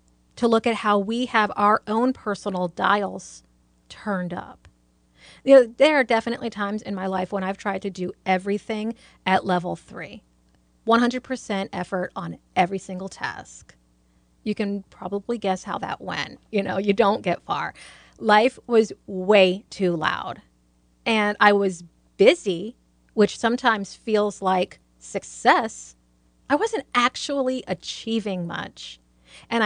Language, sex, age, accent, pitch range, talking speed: English, female, 30-49, American, 175-225 Hz, 140 wpm